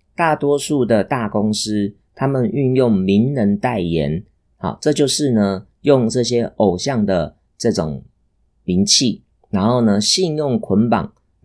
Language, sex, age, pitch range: Chinese, male, 30-49, 100-130 Hz